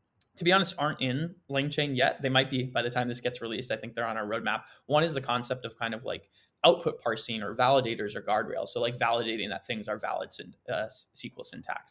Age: 20-39